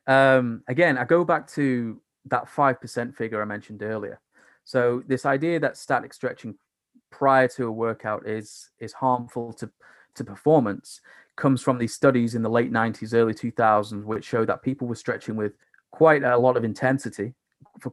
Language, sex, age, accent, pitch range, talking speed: English, male, 20-39, British, 110-130 Hz, 170 wpm